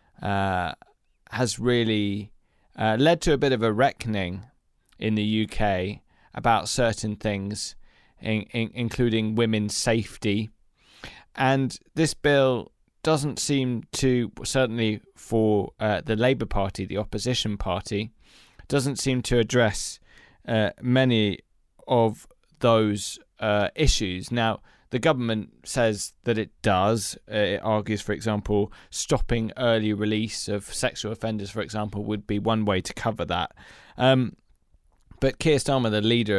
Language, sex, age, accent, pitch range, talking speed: English, male, 20-39, British, 100-120 Hz, 125 wpm